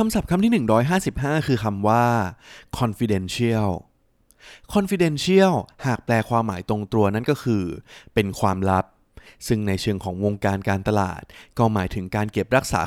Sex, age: male, 20-39